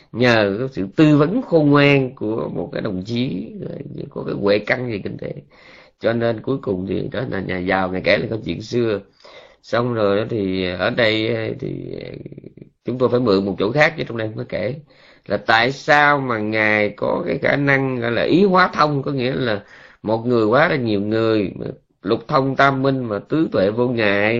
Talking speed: 205 wpm